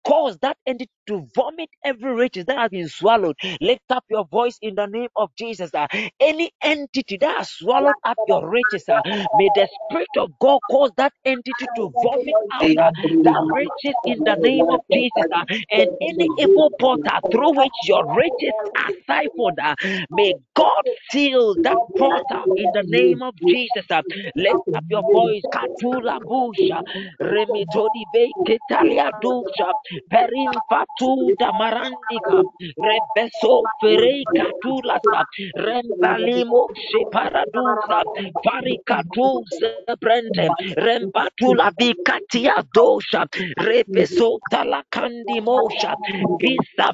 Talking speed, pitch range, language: 110 wpm, 210-285 Hz, English